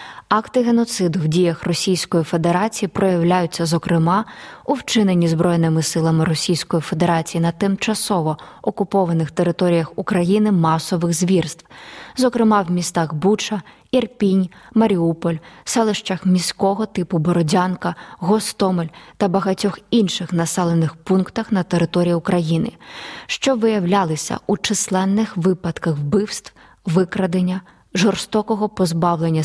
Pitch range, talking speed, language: 170-205 Hz, 100 wpm, Ukrainian